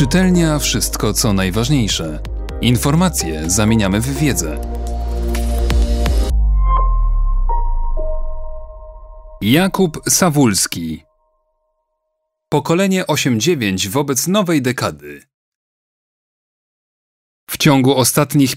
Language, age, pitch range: Polish, 30-49, 115-160 Hz